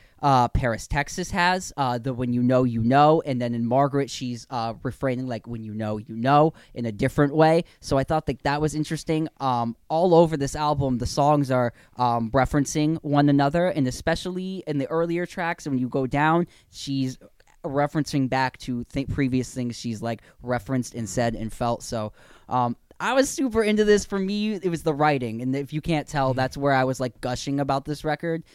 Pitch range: 130-165 Hz